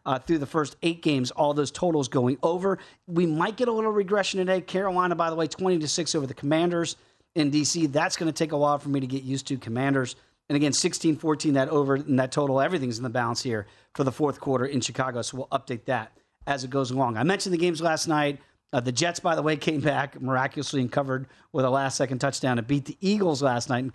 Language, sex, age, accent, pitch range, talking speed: English, male, 40-59, American, 130-170 Hz, 250 wpm